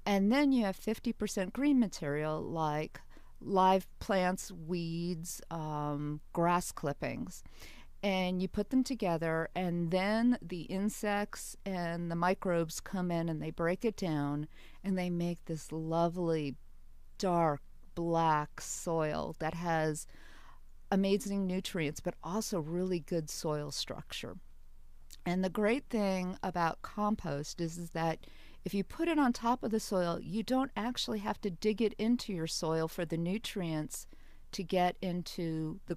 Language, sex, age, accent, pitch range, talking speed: English, female, 40-59, American, 165-200 Hz, 145 wpm